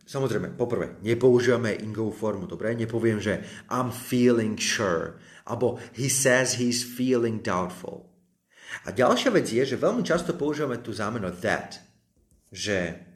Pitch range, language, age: 100-130 Hz, Slovak, 30-49